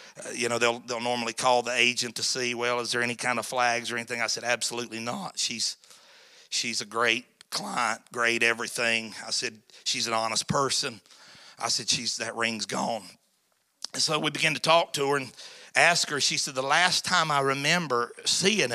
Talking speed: 200 wpm